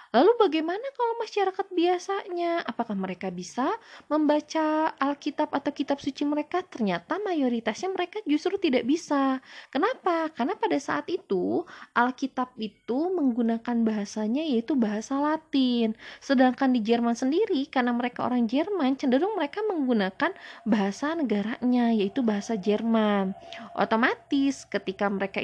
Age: 20-39